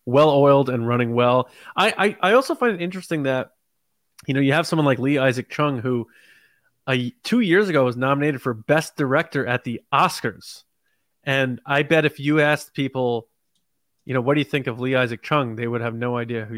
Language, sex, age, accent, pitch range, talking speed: English, male, 20-39, American, 120-155 Hz, 205 wpm